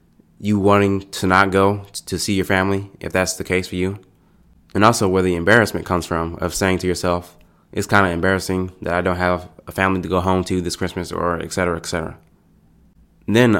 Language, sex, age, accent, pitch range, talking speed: English, male, 20-39, American, 90-100 Hz, 220 wpm